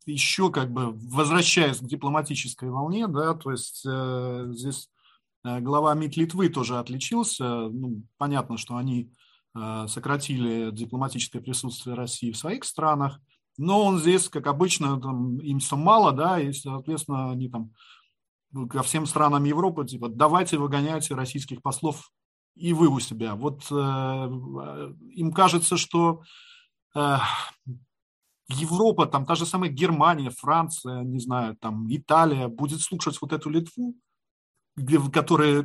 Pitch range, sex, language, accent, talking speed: 130-165 Hz, male, Russian, native, 135 wpm